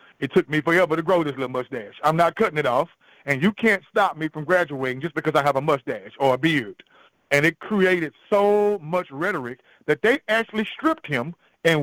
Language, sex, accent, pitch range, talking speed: English, male, American, 140-185 Hz, 215 wpm